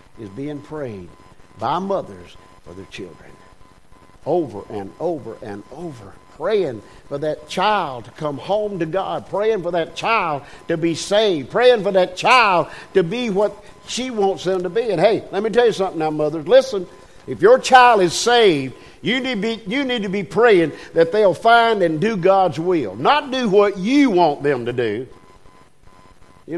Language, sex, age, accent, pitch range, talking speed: English, male, 50-69, American, 150-215 Hz, 175 wpm